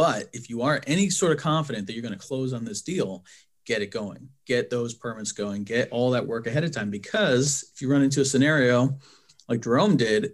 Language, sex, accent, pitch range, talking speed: English, male, American, 120-150 Hz, 230 wpm